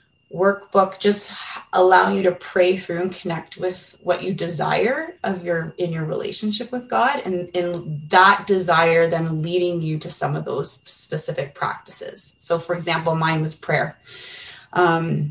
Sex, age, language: female, 20-39, English